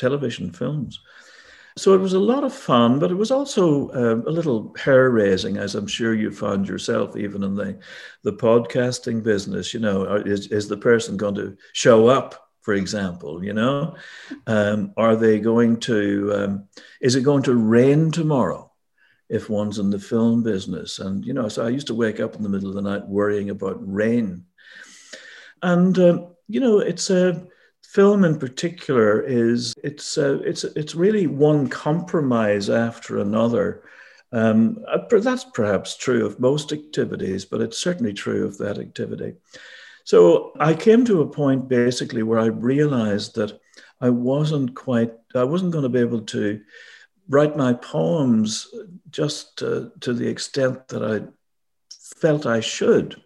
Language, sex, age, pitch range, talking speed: English, male, 60-79, 105-160 Hz, 165 wpm